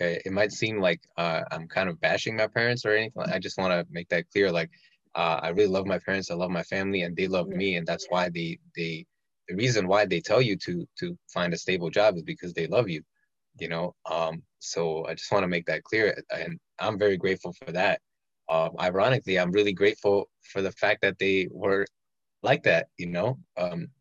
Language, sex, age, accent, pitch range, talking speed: English, male, 20-39, American, 90-110 Hz, 225 wpm